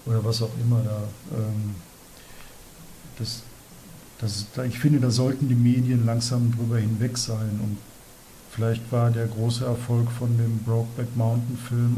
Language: German